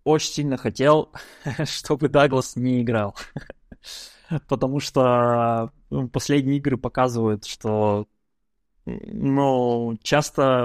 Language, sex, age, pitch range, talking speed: Russian, male, 20-39, 110-135 Hz, 90 wpm